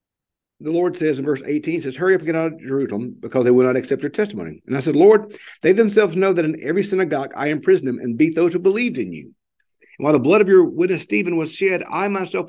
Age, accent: 50-69, American